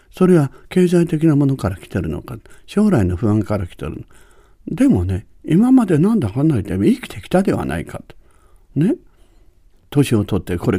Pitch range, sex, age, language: 95-145 Hz, male, 60-79, Japanese